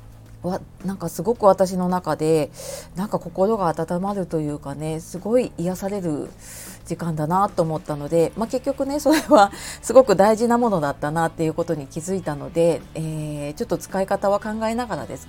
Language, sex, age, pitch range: Japanese, female, 30-49, 155-215 Hz